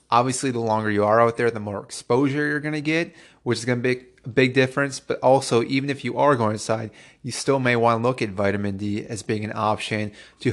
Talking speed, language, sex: 250 wpm, English, male